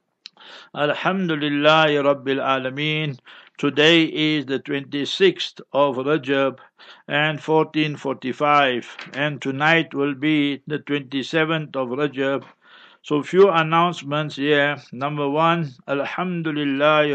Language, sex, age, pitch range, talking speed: English, male, 60-79, 140-155 Hz, 90 wpm